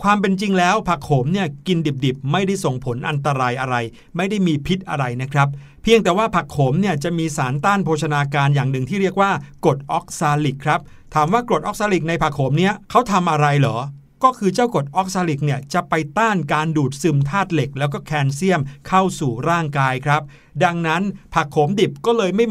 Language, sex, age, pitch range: Thai, male, 60-79, 140-185 Hz